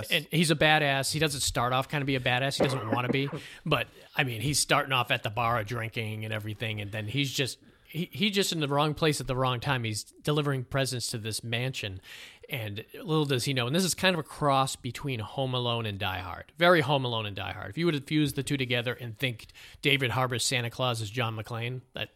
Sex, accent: male, American